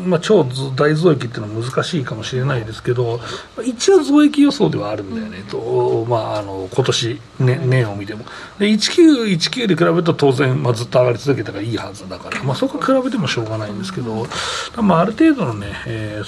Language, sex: Japanese, male